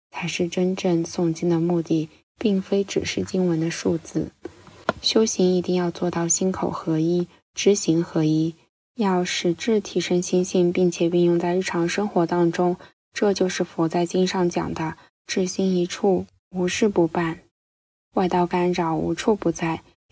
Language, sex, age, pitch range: Chinese, female, 10-29, 165-185 Hz